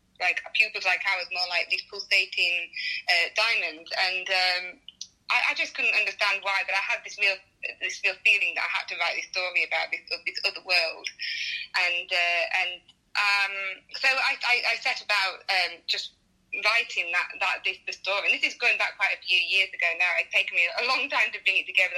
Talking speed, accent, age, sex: 215 wpm, British, 20-39, female